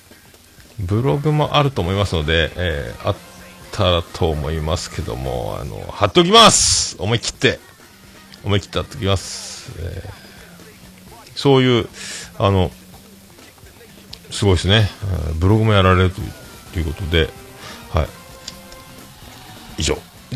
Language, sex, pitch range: Japanese, male, 85-120 Hz